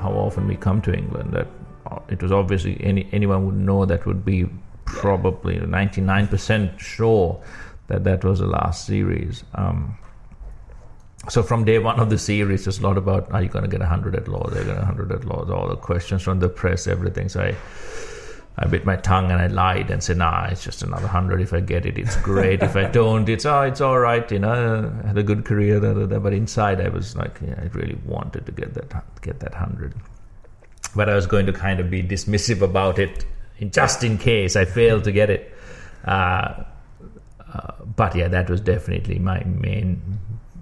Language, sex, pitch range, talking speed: English, male, 95-110 Hz, 215 wpm